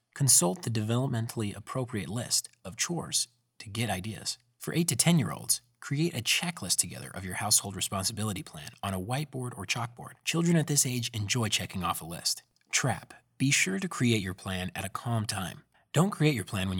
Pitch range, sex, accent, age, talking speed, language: 105-140 Hz, male, American, 30-49, 195 wpm, English